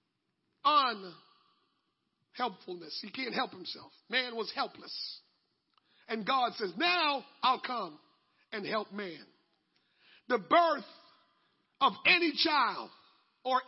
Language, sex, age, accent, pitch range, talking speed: English, male, 50-69, American, 205-260 Hz, 100 wpm